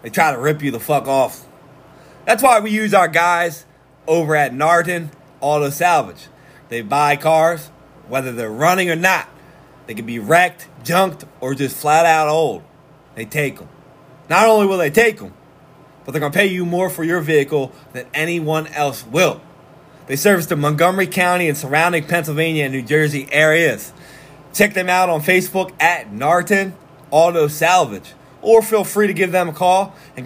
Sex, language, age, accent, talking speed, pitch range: male, English, 20-39, American, 180 wpm, 145-185 Hz